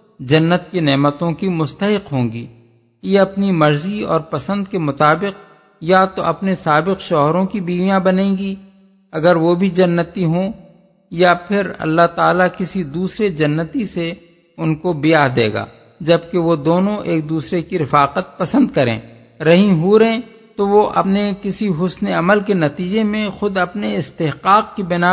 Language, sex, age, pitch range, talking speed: Urdu, male, 50-69, 155-195 Hz, 160 wpm